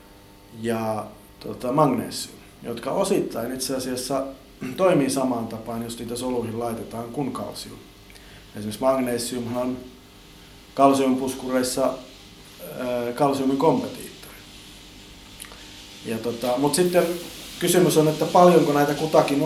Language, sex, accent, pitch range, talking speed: Finnish, male, native, 115-140 Hz, 100 wpm